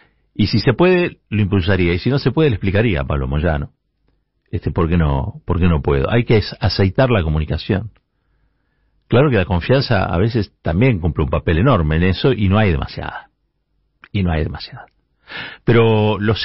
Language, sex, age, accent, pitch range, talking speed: Spanish, male, 50-69, Argentinian, 80-105 Hz, 190 wpm